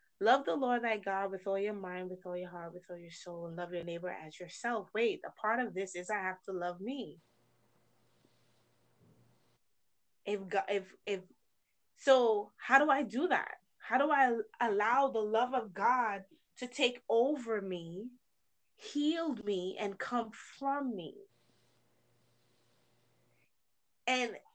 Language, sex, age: English, female, 20-39